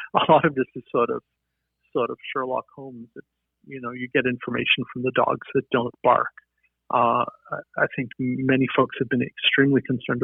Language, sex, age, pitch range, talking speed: English, male, 50-69, 120-135 Hz, 180 wpm